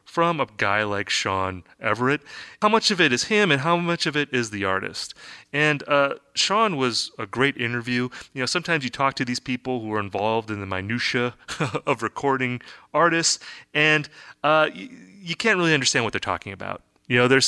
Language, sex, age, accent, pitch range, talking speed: English, male, 30-49, American, 110-155 Hz, 195 wpm